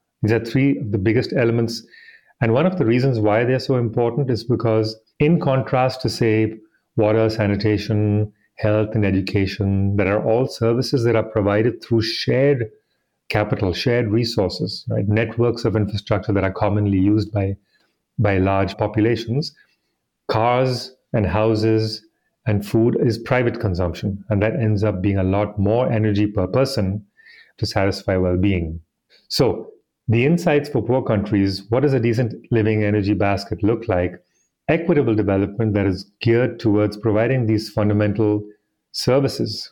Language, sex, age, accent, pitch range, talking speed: English, male, 40-59, Indian, 105-120 Hz, 150 wpm